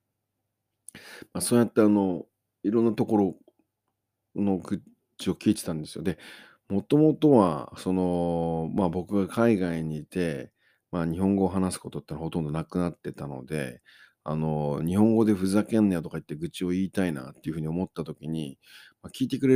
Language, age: Japanese, 40-59